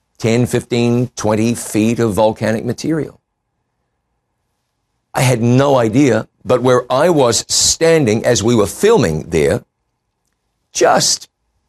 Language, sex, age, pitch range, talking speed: English, male, 50-69, 115-150 Hz, 115 wpm